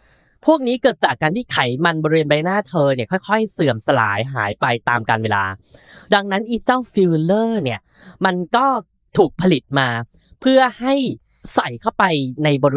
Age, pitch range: 10-29, 140-215 Hz